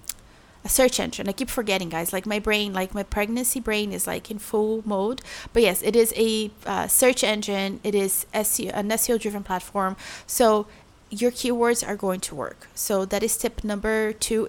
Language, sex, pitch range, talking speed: English, female, 200-235 Hz, 195 wpm